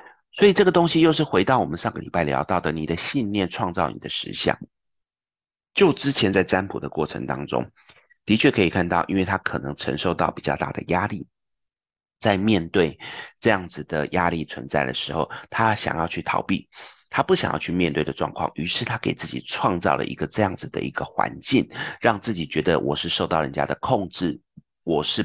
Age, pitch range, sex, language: 30-49, 80-110 Hz, male, Chinese